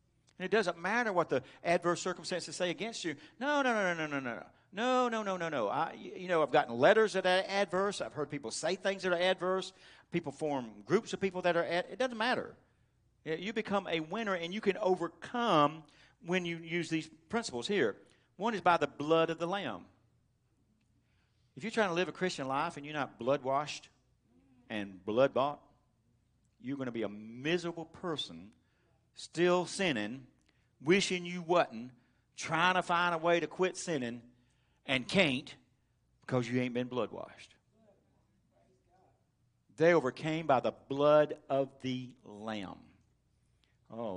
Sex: male